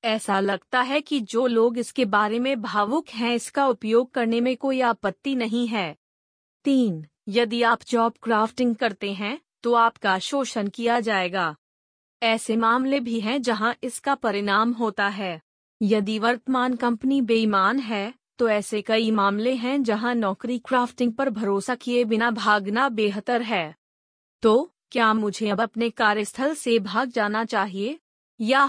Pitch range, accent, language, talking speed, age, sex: 215-255 Hz, native, Hindi, 150 wpm, 30-49, female